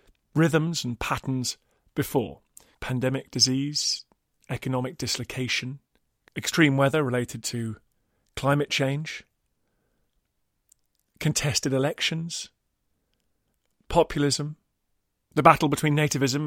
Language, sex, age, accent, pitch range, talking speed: English, male, 40-59, British, 125-155 Hz, 75 wpm